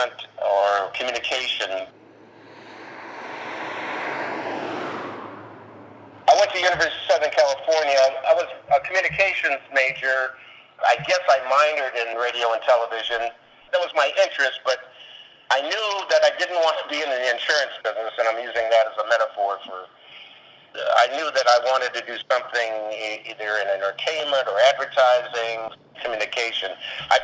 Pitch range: 110-140 Hz